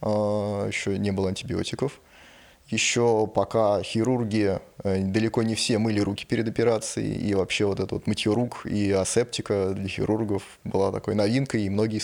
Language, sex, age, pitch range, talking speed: Russian, male, 20-39, 100-115 Hz, 145 wpm